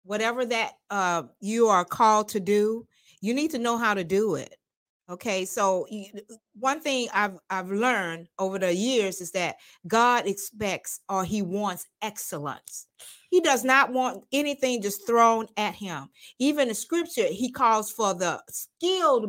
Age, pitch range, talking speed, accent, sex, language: 40-59, 200-270 Hz, 160 wpm, American, female, English